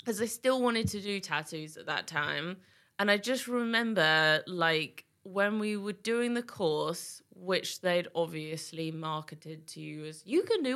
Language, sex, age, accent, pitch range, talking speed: English, female, 20-39, British, 170-255 Hz, 175 wpm